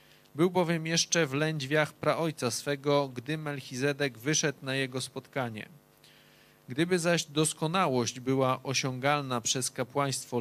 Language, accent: Polish, native